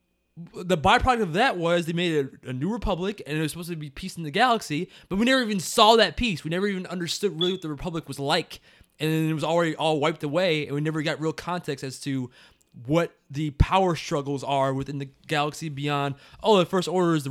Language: English